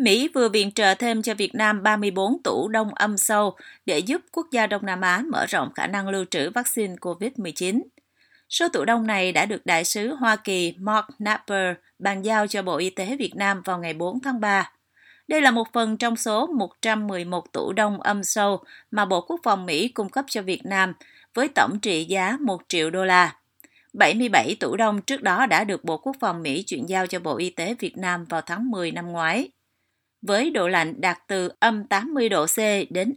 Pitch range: 185-230 Hz